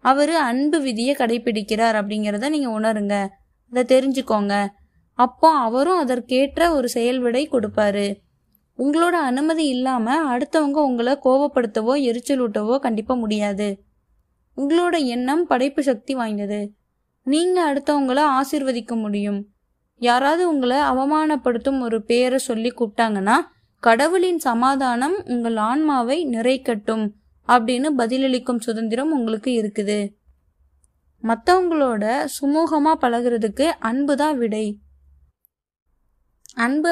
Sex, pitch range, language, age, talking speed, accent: female, 225-285 Hz, Tamil, 20-39, 75 wpm, native